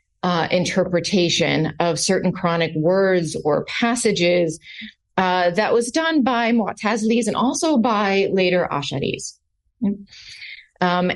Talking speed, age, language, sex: 110 wpm, 40-59, English, female